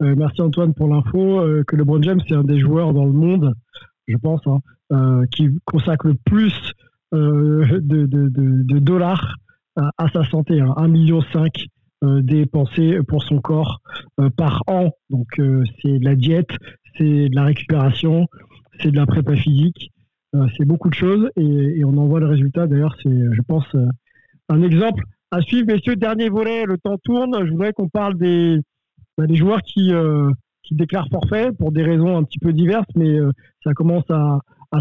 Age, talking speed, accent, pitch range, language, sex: 50-69, 195 wpm, French, 145-175 Hz, French, male